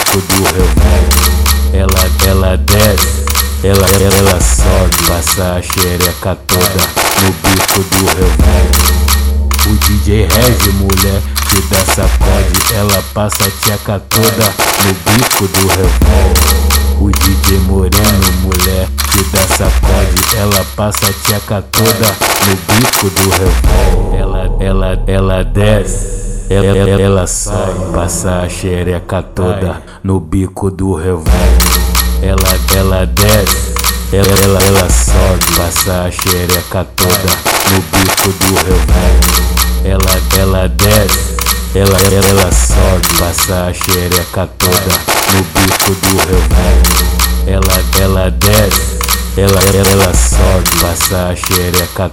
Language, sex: English, male